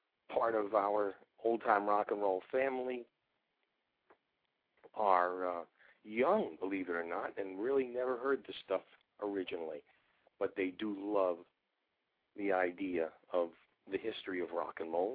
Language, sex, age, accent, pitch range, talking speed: English, male, 50-69, American, 95-135 Hz, 140 wpm